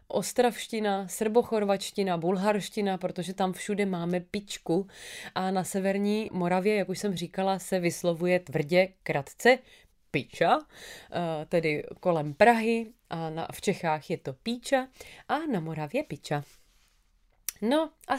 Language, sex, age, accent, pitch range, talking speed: Czech, female, 30-49, native, 170-220 Hz, 120 wpm